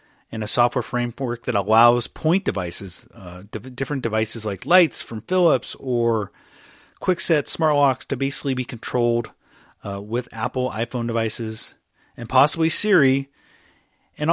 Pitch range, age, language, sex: 115-140 Hz, 30-49, English, male